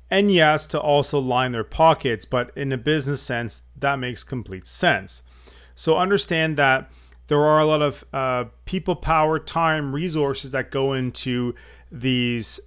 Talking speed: 155 wpm